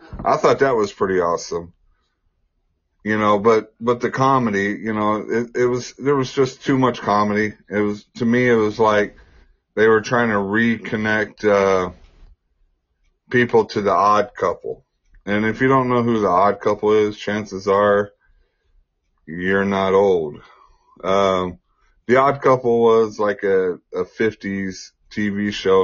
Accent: American